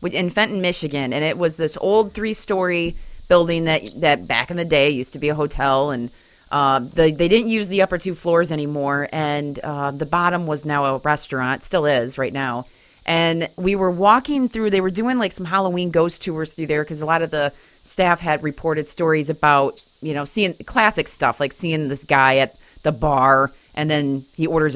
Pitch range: 145-180 Hz